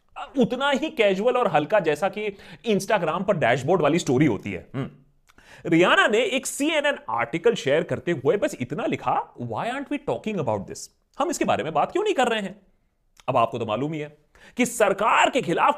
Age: 30-49